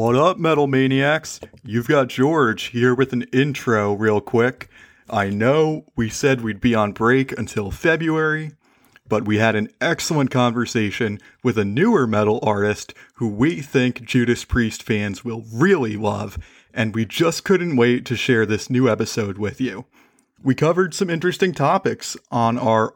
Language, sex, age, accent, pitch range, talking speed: English, male, 30-49, American, 110-150 Hz, 160 wpm